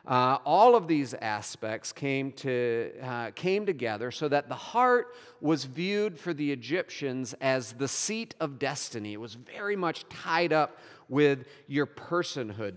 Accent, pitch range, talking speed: American, 120-170 Hz, 150 wpm